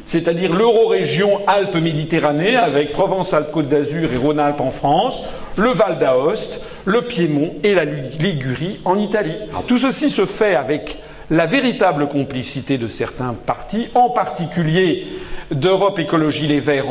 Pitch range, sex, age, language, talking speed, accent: 155-240 Hz, male, 50-69, French, 130 wpm, French